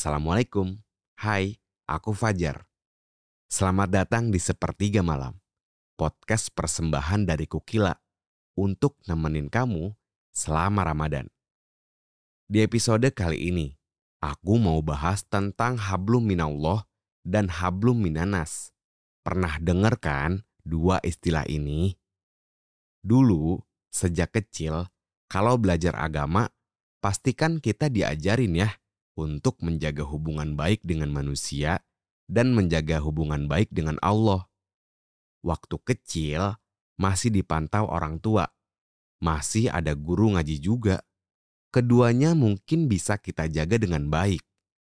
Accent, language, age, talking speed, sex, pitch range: native, Indonesian, 30-49, 100 wpm, male, 80-105 Hz